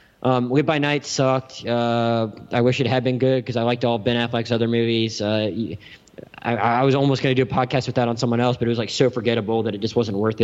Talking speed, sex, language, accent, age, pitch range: 265 wpm, male, English, American, 20-39, 115-130 Hz